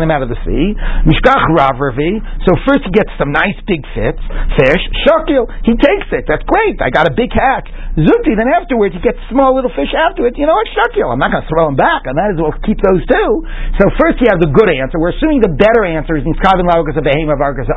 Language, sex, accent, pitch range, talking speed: English, male, American, 160-245 Hz, 235 wpm